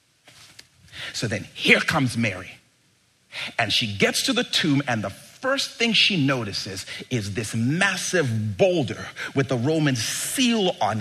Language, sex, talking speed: English, male, 140 wpm